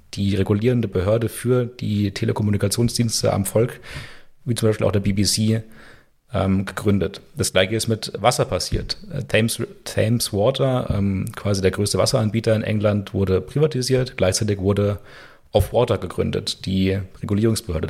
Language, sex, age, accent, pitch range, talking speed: German, male, 30-49, German, 95-115 Hz, 135 wpm